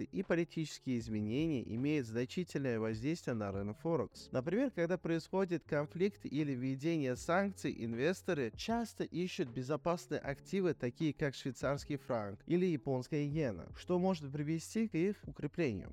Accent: native